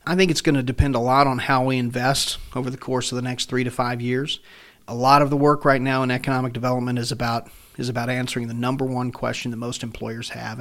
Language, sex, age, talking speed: English, male, 40-59, 255 wpm